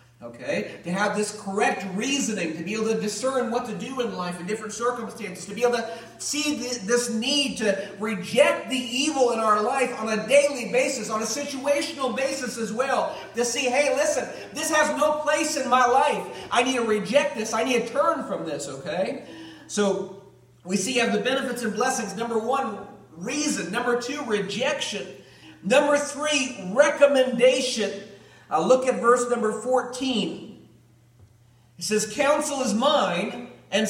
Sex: male